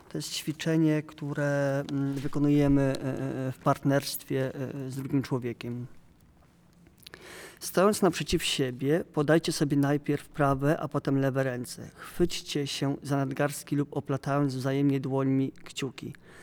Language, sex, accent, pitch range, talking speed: Polish, male, native, 135-155 Hz, 110 wpm